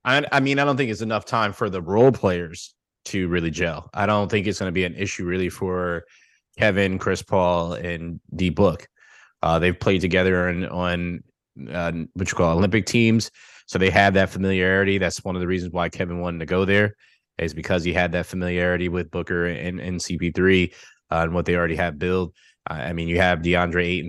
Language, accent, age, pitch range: English, American, 20-39, 85-100 Hz